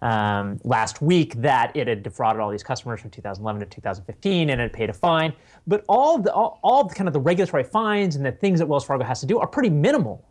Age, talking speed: 30-49, 225 wpm